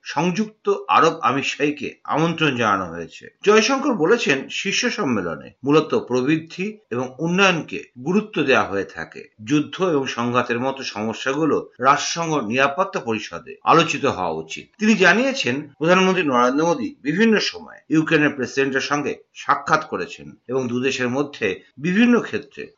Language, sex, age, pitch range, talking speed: Bengali, male, 50-69, 125-195 Hz, 115 wpm